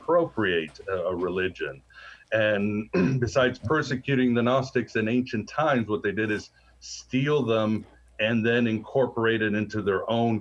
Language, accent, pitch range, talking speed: English, American, 105-125 Hz, 140 wpm